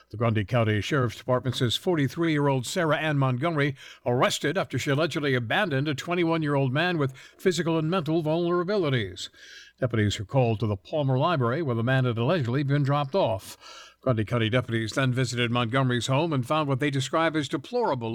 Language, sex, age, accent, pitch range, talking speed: English, male, 60-79, American, 125-170 Hz, 170 wpm